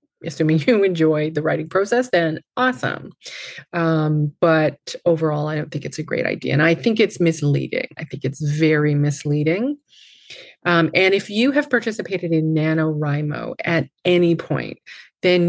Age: 30-49